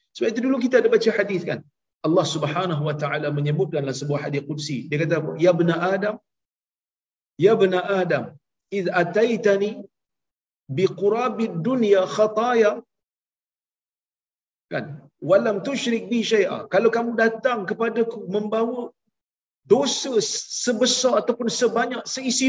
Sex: male